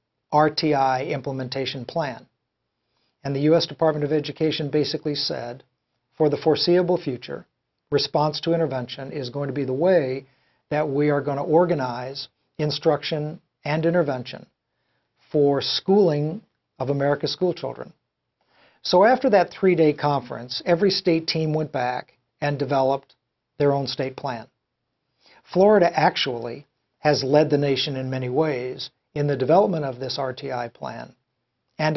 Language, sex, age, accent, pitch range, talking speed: English, male, 60-79, American, 130-155 Hz, 135 wpm